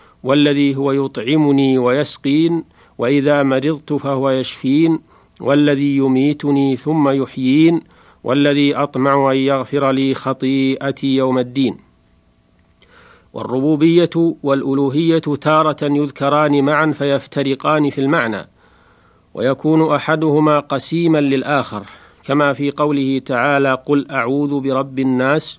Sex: male